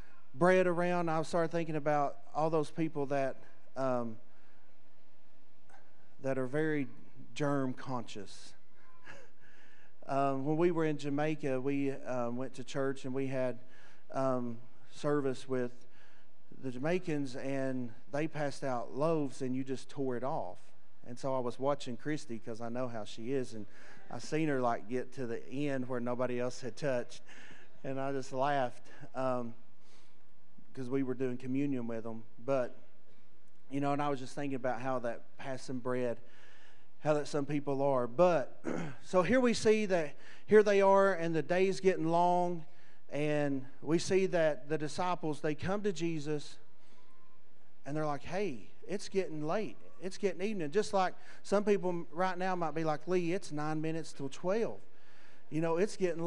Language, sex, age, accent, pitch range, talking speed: English, male, 40-59, American, 130-170 Hz, 165 wpm